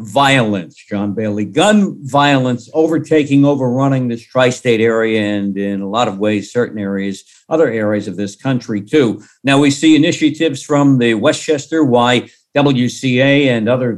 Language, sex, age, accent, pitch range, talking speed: English, male, 50-69, American, 120-140 Hz, 145 wpm